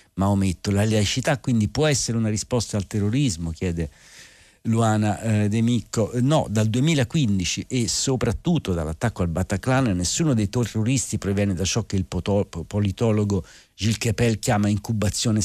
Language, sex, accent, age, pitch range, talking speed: Italian, male, native, 50-69, 95-115 Hz, 140 wpm